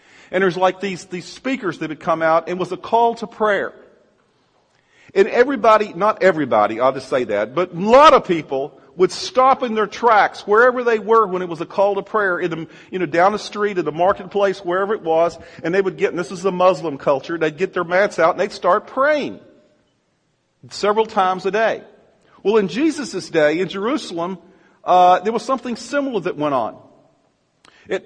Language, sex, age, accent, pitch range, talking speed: English, male, 50-69, American, 175-225 Hz, 205 wpm